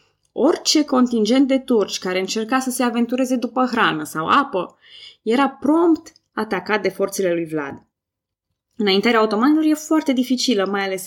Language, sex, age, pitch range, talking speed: Romanian, female, 20-39, 185-255 Hz, 145 wpm